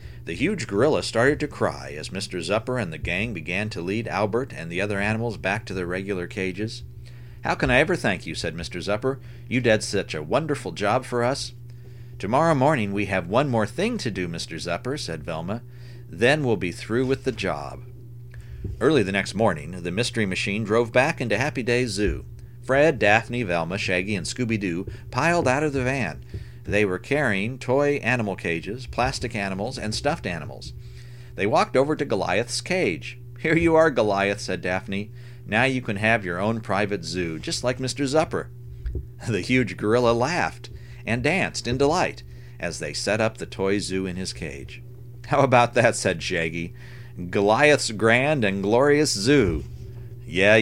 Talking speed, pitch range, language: 180 wpm, 100-125 Hz, English